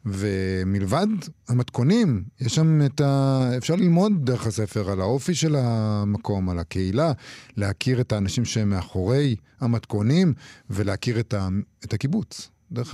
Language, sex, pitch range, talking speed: Hebrew, male, 105-130 Hz, 130 wpm